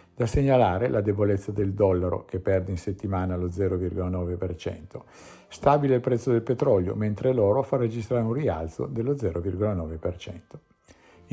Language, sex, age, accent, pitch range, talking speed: Italian, male, 50-69, native, 95-120 Hz, 130 wpm